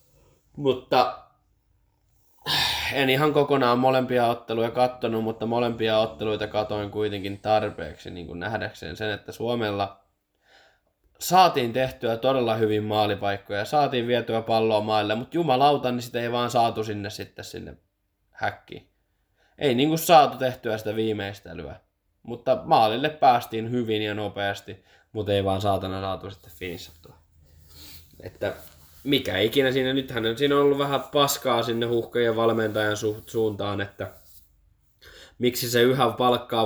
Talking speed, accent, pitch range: 130 wpm, native, 100-120 Hz